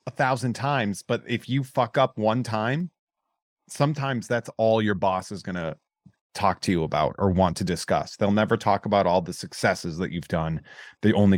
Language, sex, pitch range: English, male, 105-140 Hz